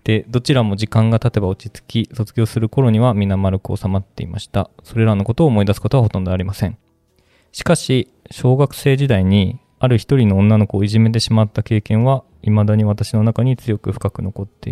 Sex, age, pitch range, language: male, 20-39, 100-120 Hz, Japanese